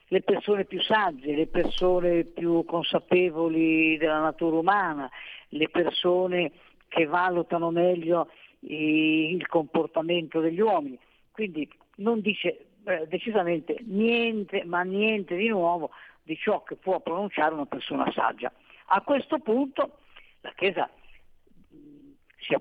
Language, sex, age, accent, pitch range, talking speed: Italian, female, 50-69, native, 155-205 Hz, 115 wpm